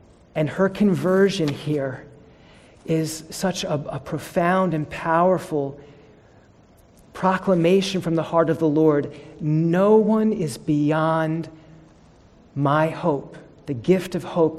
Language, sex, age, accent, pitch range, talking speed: English, male, 40-59, American, 150-185 Hz, 115 wpm